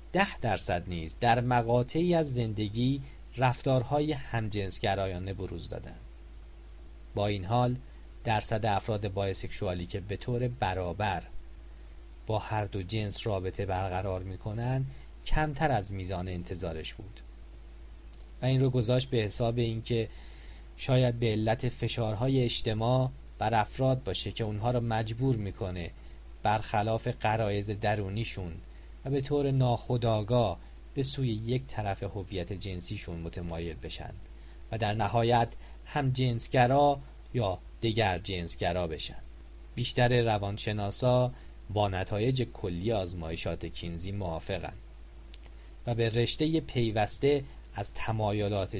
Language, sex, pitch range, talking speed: English, male, 85-120 Hz, 115 wpm